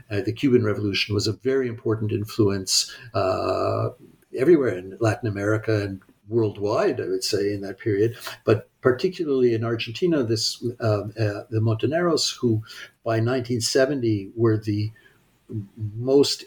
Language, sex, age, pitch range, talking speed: English, male, 60-79, 105-125 Hz, 135 wpm